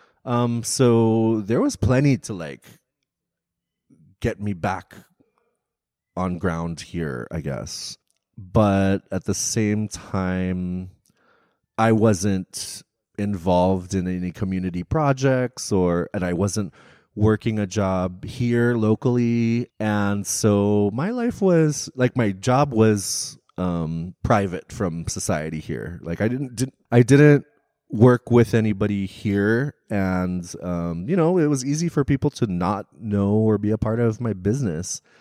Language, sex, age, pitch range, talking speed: English, male, 30-49, 95-115 Hz, 135 wpm